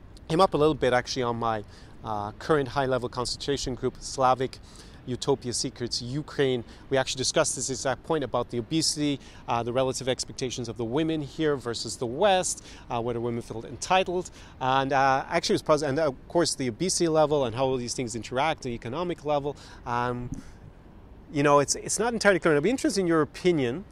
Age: 30-49